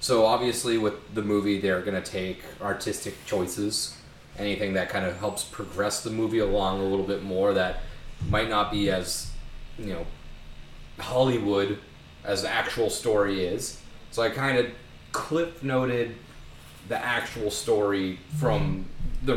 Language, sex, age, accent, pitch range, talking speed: English, male, 30-49, American, 95-115 Hz, 145 wpm